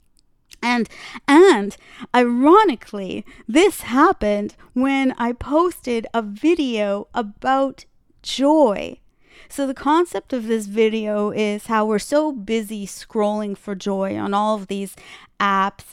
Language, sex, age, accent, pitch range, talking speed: English, female, 30-49, American, 195-255 Hz, 115 wpm